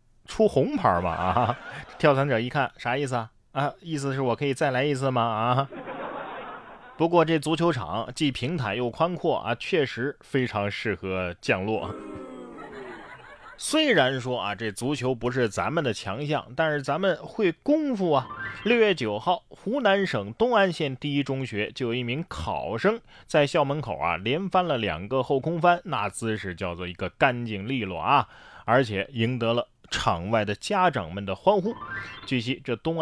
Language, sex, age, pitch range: Chinese, male, 20-39, 105-160 Hz